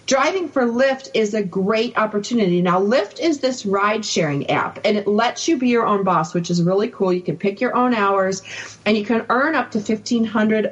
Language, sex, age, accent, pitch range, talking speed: English, female, 40-59, American, 185-225 Hz, 215 wpm